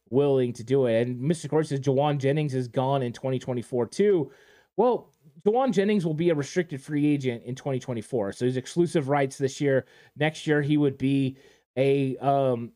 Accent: American